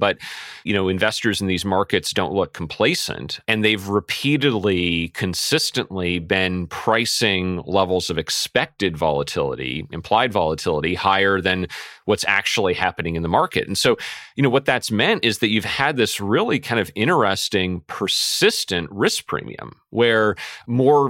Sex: male